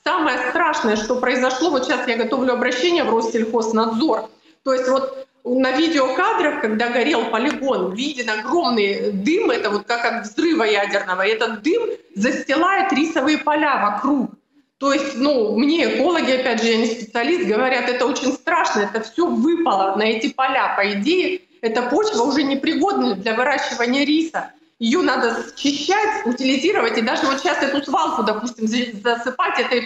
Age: 30-49